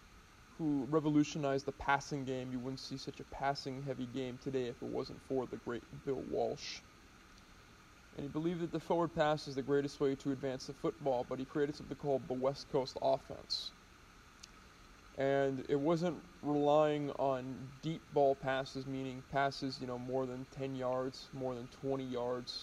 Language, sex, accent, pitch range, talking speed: English, male, American, 130-150 Hz, 170 wpm